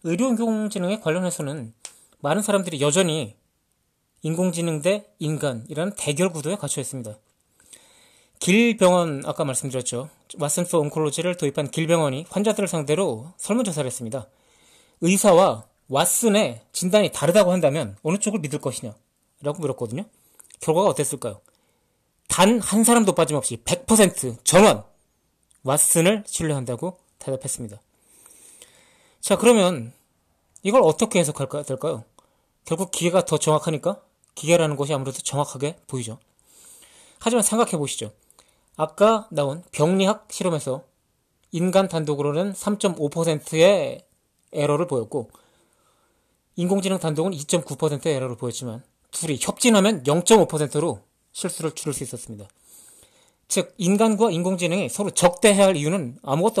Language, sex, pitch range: Korean, male, 140-190 Hz